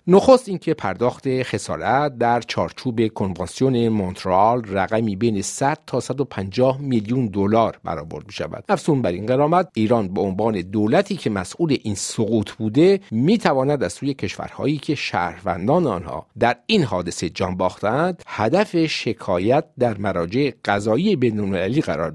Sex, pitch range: male, 105-140 Hz